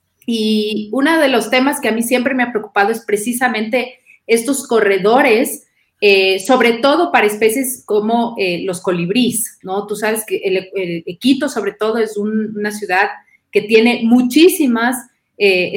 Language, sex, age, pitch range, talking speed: English, female, 30-49, 210-265 Hz, 160 wpm